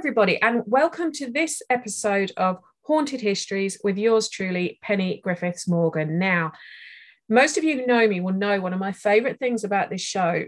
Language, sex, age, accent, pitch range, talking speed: English, female, 40-59, British, 190-235 Hz, 185 wpm